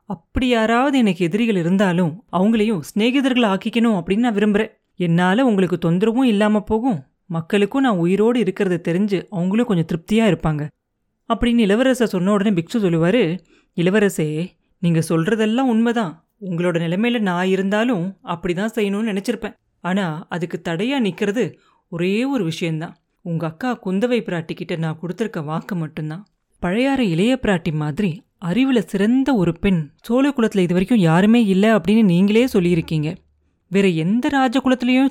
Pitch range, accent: 175-230 Hz, native